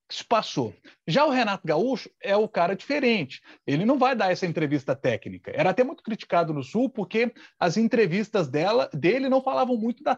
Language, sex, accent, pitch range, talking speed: Portuguese, male, Brazilian, 155-235 Hz, 190 wpm